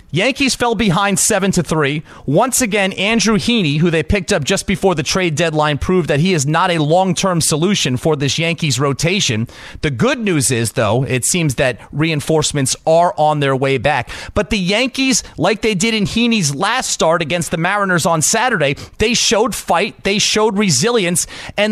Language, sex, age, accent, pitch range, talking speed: English, male, 30-49, American, 165-235 Hz, 180 wpm